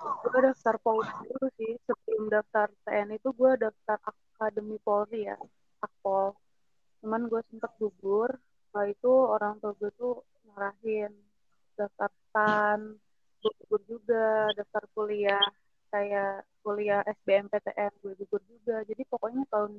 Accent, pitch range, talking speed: native, 205-230 Hz, 125 wpm